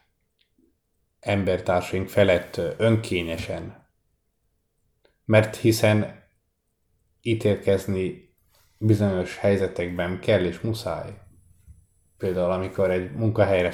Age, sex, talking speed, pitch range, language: 30-49, male, 65 wpm, 90-105 Hz, Hungarian